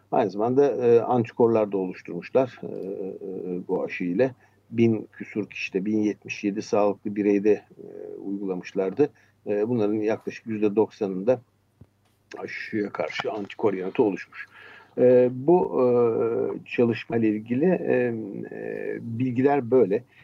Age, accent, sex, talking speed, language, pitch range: 50-69, native, male, 115 wpm, Turkish, 105-130 Hz